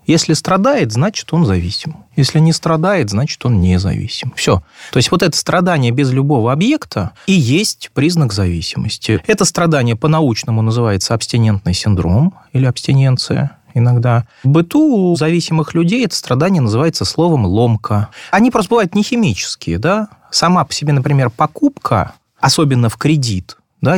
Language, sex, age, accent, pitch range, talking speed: Russian, male, 30-49, native, 115-170 Hz, 145 wpm